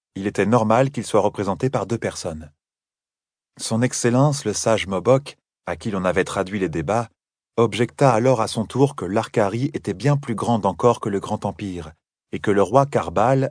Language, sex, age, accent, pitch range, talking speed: French, male, 30-49, French, 100-130 Hz, 185 wpm